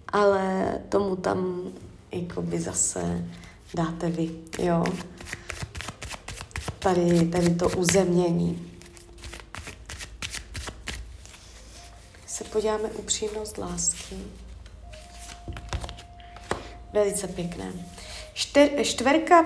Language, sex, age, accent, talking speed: Czech, female, 20-39, native, 65 wpm